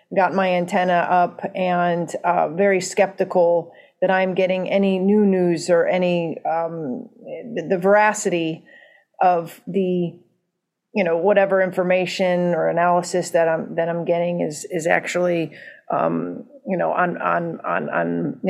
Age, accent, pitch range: 40-59, American, 175-205 Hz